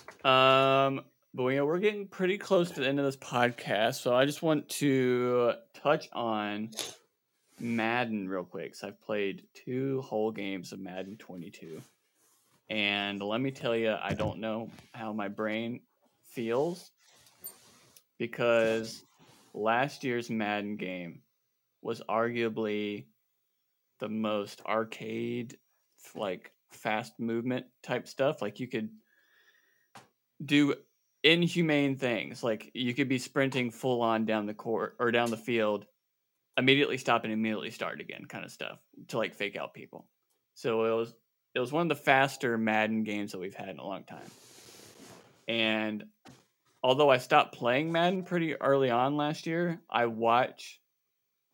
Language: English